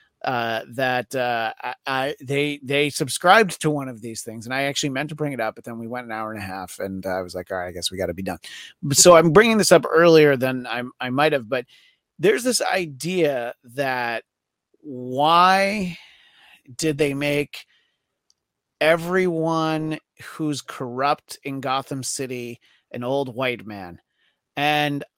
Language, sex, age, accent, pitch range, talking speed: English, male, 30-49, American, 135-170 Hz, 180 wpm